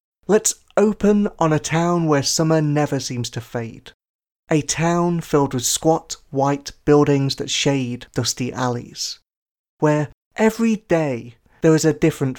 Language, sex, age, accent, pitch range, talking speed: English, male, 30-49, British, 130-170 Hz, 140 wpm